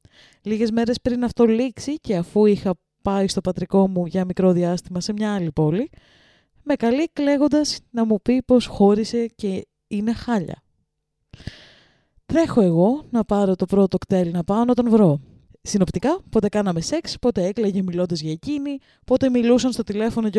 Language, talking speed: Greek, 165 wpm